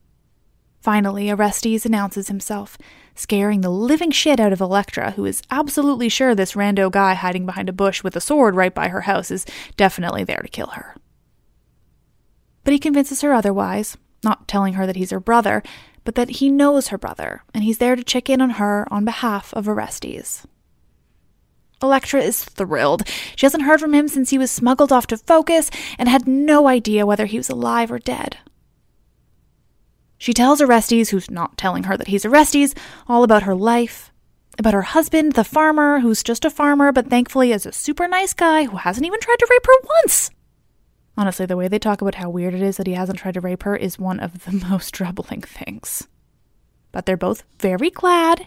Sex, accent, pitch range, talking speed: female, American, 195-275 Hz, 195 wpm